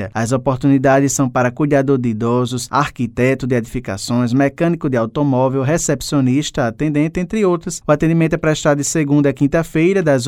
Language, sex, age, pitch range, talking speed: Portuguese, male, 20-39, 125-155 Hz, 150 wpm